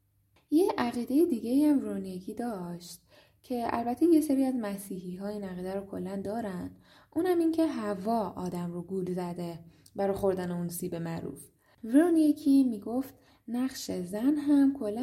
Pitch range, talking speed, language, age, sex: 180-270 Hz, 145 wpm, Persian, 10-29, female